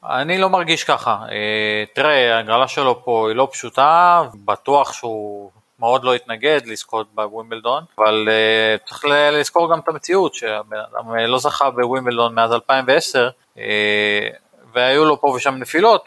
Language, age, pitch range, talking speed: Hebrew, 20-39, 115-140 Hz, 135 wpm